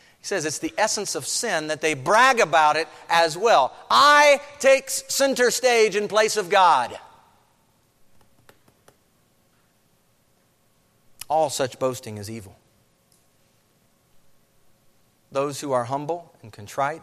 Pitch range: 120-170 Hz